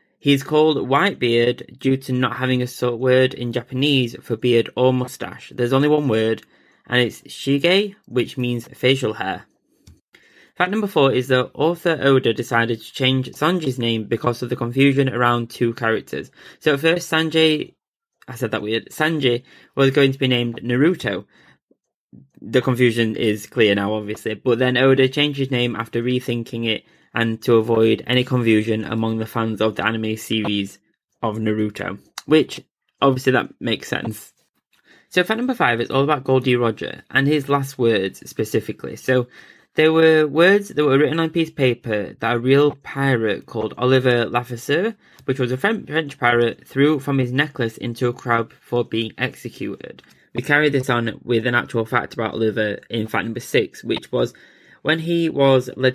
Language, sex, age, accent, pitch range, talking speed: English, male, 20-39, British, 115-140 Hz, 175 wpm